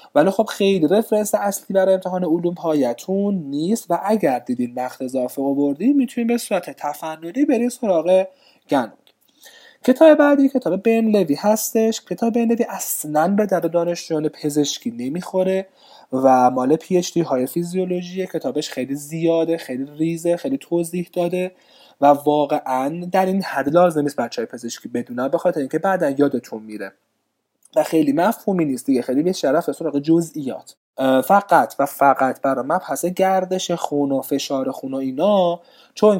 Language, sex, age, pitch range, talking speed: Persian, male, 30-49, 140-205 Hz, 140 wpm